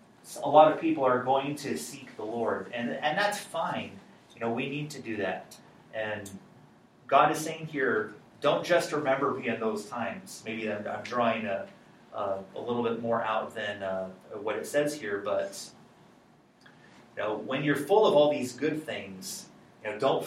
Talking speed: 190 wpm